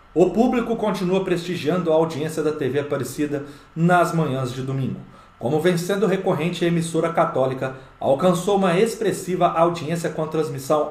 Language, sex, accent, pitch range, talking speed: Portuguese, male, Brazilian, 135-180 Hz, 150 wpm